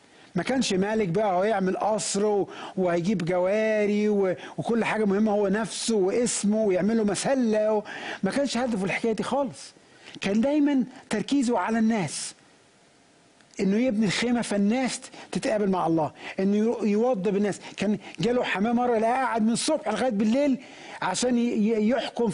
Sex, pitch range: male, 180-225 Hz